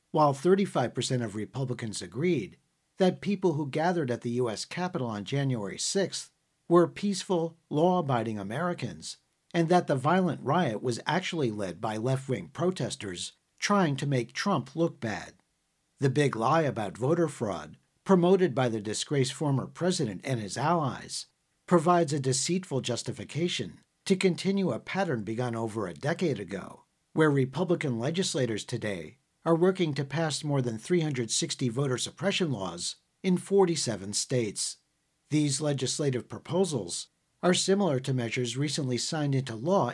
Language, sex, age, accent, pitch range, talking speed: English, male, 50-69, American, 125-175 Hz, 140 wpm